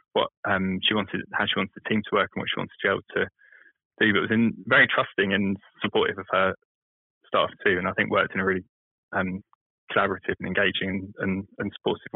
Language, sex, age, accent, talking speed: English, male, 20-39, British, 225 wpm